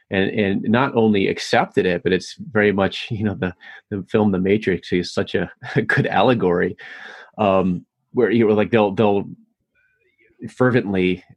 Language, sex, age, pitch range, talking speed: English, male, 30-49, 95-115 Hz, 170 wpm